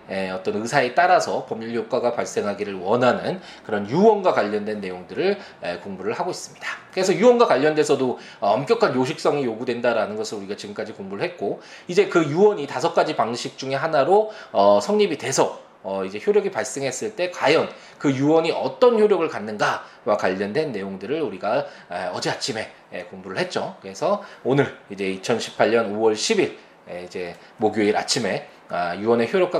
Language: Korean